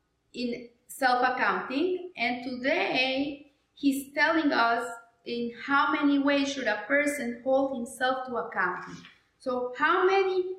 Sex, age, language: female, 30-49, English